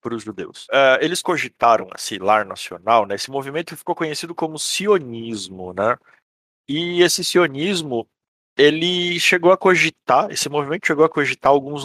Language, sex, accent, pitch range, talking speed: Portuguese, male, Brazilian, 110-150 Hz, 150 wpm